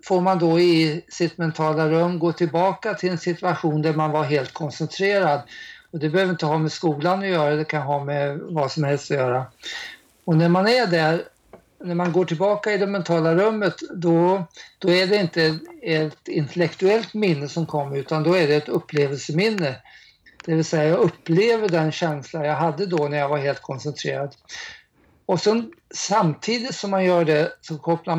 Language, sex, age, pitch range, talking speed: Swedish, male, 50-69, 155-185 Hz, 185 wpm